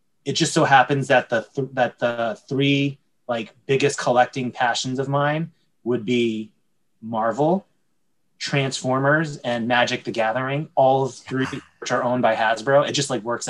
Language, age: English, 20-39